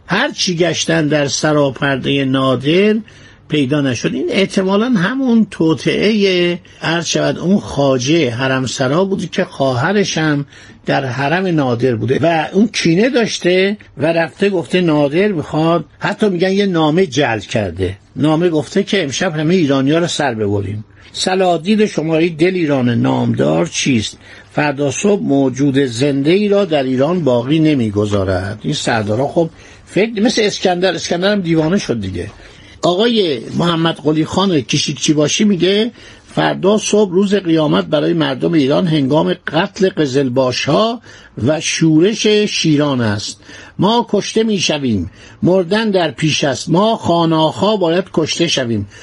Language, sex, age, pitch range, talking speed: Persian, male, 60-79, 135-190 Hz, 135 wpm